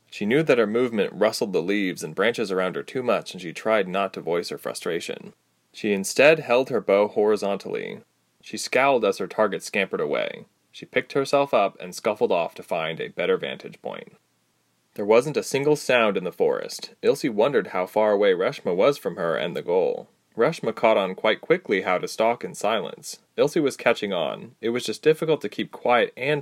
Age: 30-49